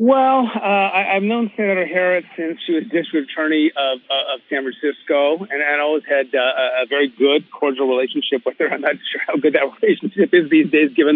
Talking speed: 215 wpm